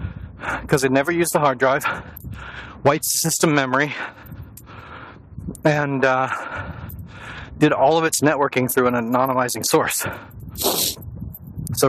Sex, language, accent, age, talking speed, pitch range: male, English, American, 40-59, 110 wpm, 110-145 Hz